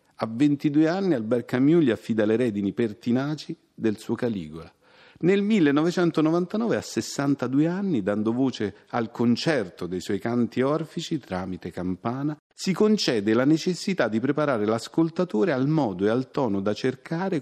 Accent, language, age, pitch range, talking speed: native, Italian, 40-59, 110-155 Hz, 145 wpm